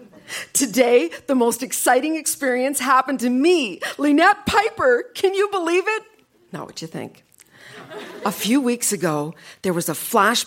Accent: American